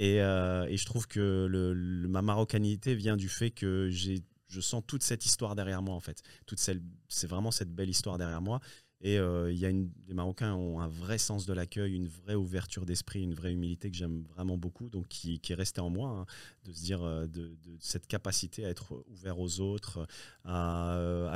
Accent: French